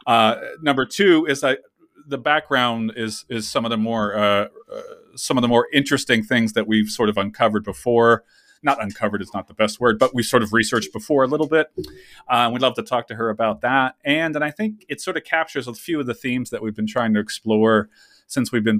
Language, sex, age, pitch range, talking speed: English, male, 30-49, 110-145 Hz, 235 wpm